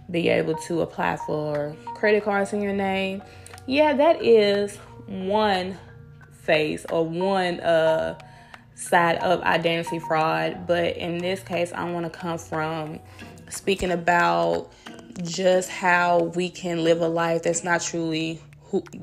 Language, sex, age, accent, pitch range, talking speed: English, female, 20-39, American, 160-190 Hz, 135 wpm